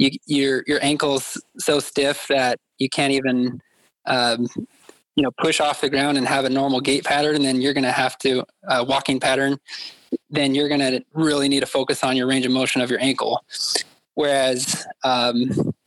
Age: 20-39